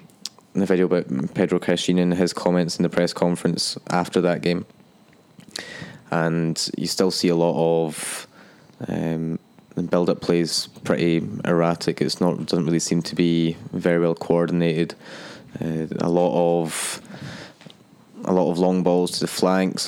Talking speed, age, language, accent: 150 wpm, 20-39, English, British